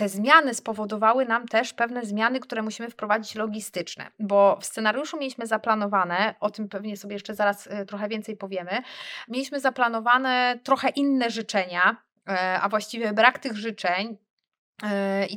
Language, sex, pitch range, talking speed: Polish, female, 205-260 Hz, 140 wpm